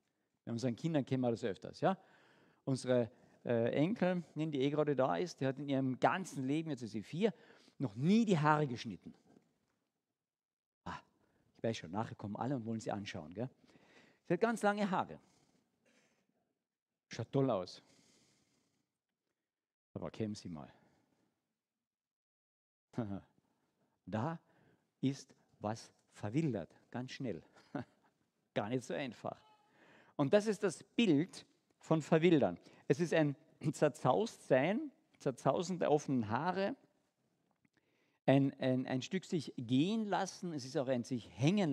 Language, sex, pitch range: German, male, 125-180 Hz